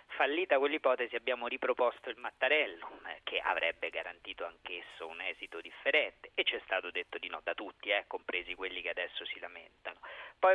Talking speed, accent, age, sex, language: 170 wpm, native, 40-59, male, Italian